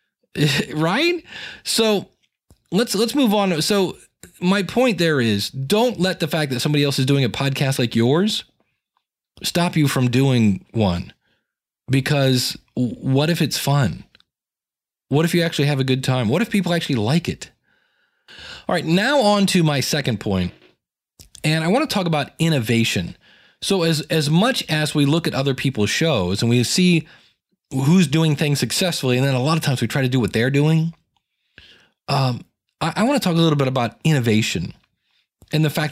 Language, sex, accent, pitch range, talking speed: English, male, American, 125-175 Hz, 180 wpm